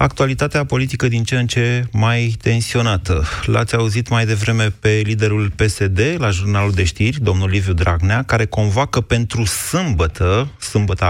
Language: Romanian